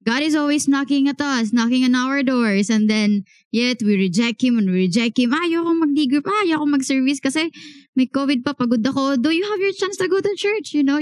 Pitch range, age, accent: 205-275 Hz, 20-39, Filipino